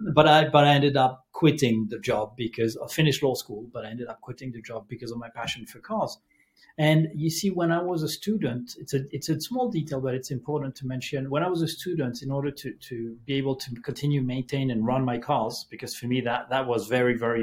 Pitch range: 130-165 Hz